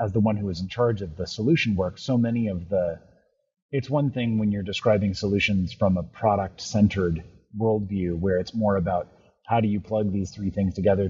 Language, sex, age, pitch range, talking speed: English, male, 30-49, 95-115 Hz, 210 wpm